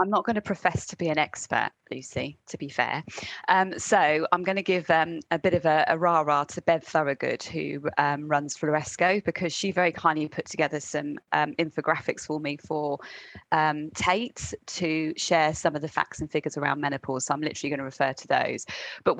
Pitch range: 150-180 Hz